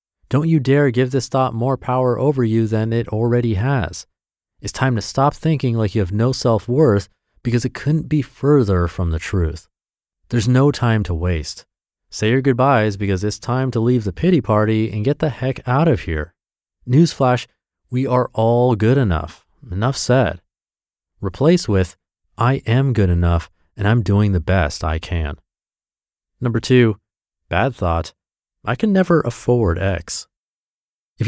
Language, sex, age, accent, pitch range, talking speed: English, male, 30-49, American, 95-135 Hz, 165 wpm